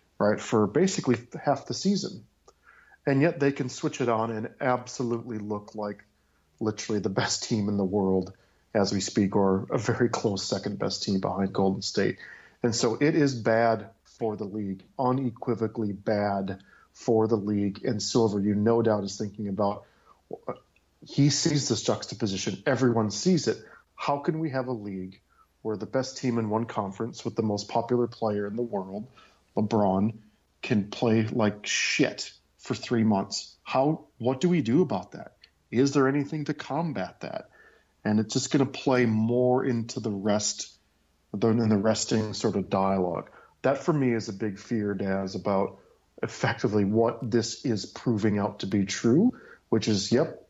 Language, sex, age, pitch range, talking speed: English, male, 40-59, 100-125 Hz, 170 wpm